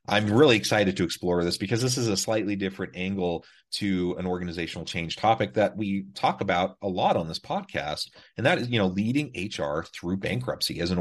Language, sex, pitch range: English, male, 85-100 Hz